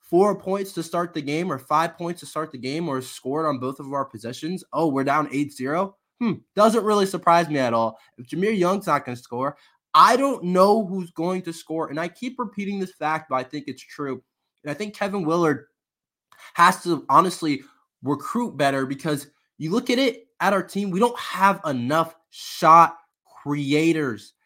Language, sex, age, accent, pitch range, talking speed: English, male, 20-39, American, 125-170 Hz, 195 wpm